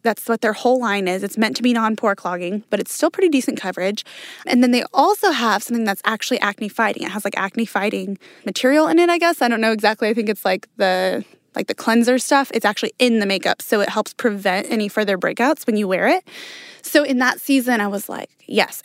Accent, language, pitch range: American, English, 210-260 Hz